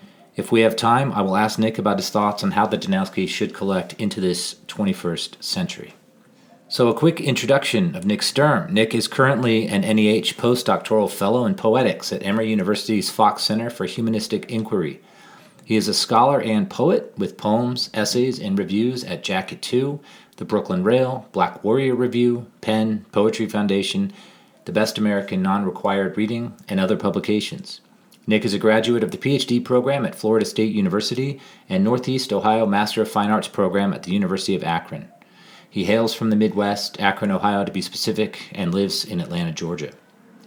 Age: 40-59